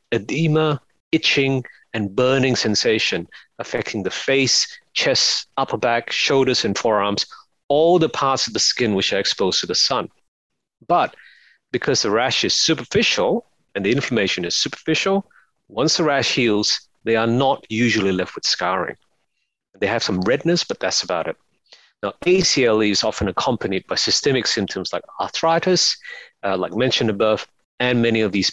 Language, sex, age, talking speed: English, male, 40-59, 155 wpm